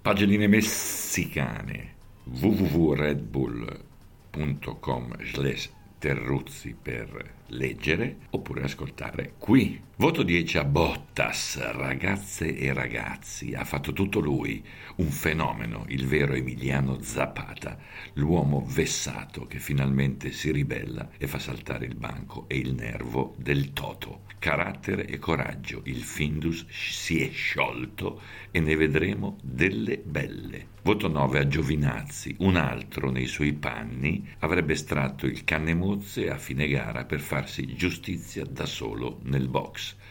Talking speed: 115 wpm